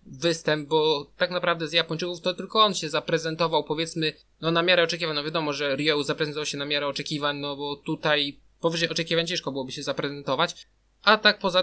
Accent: native